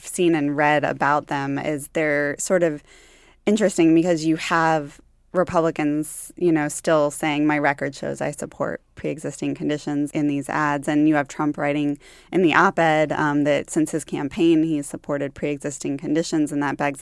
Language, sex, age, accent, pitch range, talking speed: English, female, 20-39, American, 145-160 Hz, 165 wpm